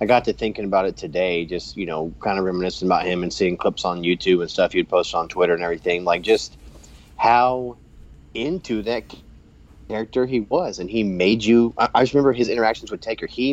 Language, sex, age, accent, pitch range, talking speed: English, male, 30-49, American, 85-115 Hz, 220 wpm